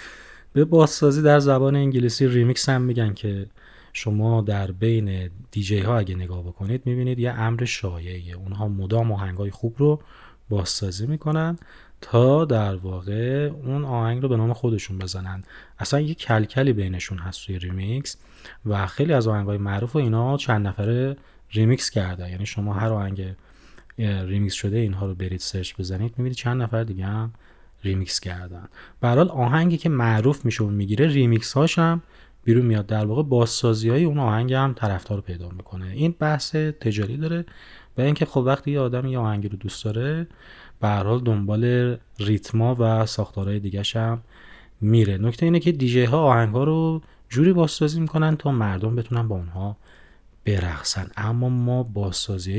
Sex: male